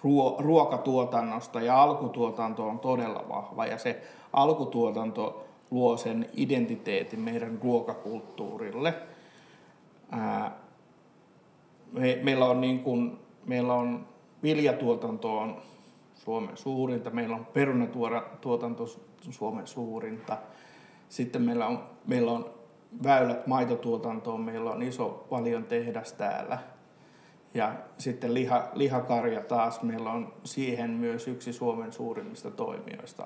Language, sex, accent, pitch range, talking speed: Finnish, male, native, 120-175 Hz, 100 wpm